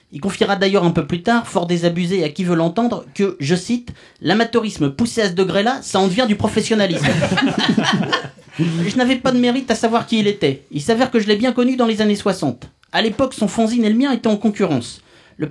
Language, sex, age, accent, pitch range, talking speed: French, male, 30-49, French, 175-240 Hz, 230 wpm